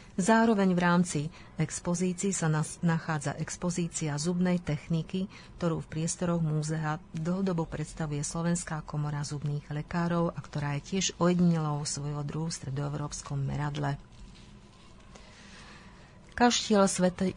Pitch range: 150-180 Hz